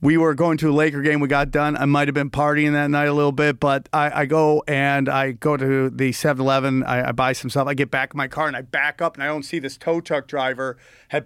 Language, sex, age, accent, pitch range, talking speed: English, male, 40-59, American, 140-175 Hz, 290 wpm